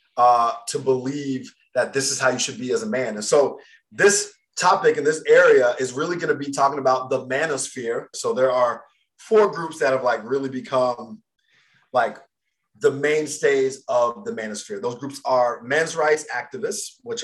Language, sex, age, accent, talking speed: English, male, 30-49, American, 180 wpm